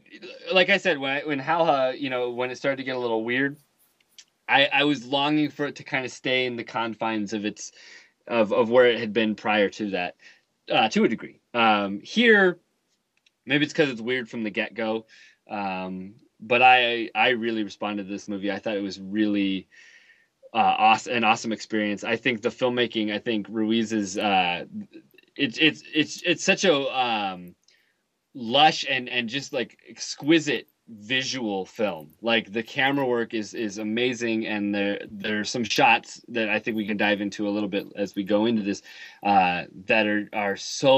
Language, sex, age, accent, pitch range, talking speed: English, male, 20-39, American, 105-140 Hz, 195 wpm